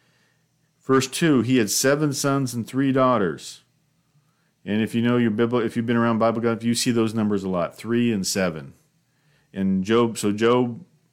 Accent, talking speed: American, 190 wpm